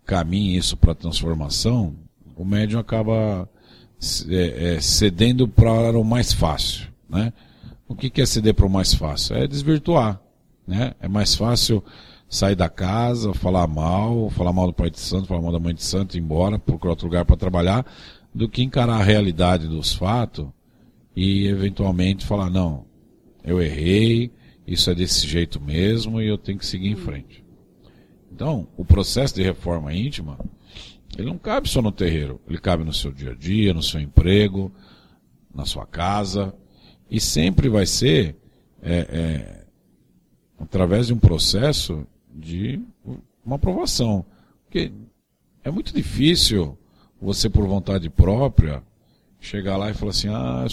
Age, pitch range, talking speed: 50-69, 85-110 Hz, 150 wpm